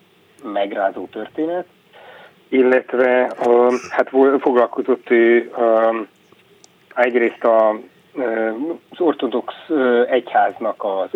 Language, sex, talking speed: Hungarian, male, 60 wpm